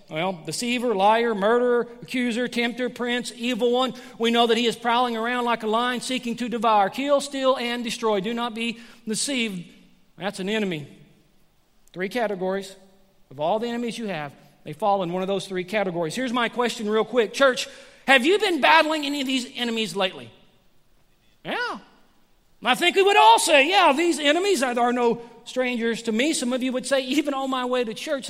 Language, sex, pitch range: English, male, 185-240 Hz